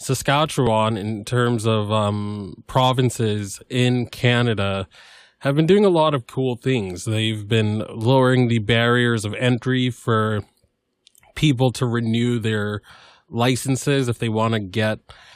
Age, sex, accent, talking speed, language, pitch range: 20-39, male, American, 135 wpm, English, 105-120 Hz